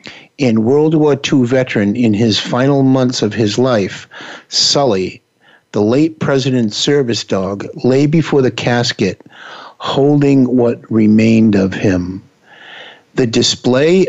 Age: 50-69